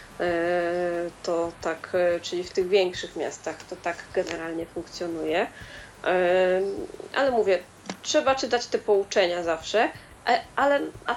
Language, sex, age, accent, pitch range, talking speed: Polish, female, 20-39, native, 190-230 Hz, 100 wpm